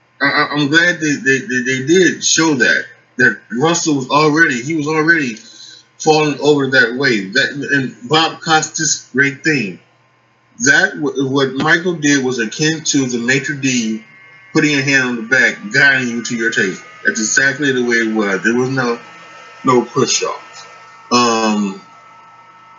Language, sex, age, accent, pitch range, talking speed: English, male, 20-39, American, 125-155 Hz, 160 wpm